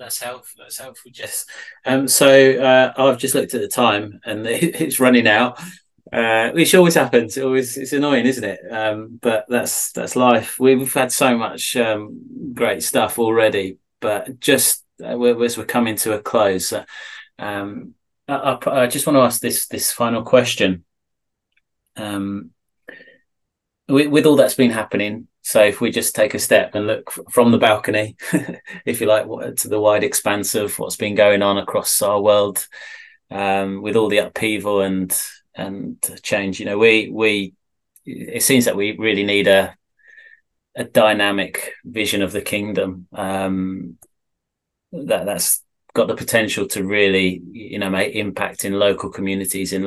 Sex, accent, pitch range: male, British, 100-125 Hz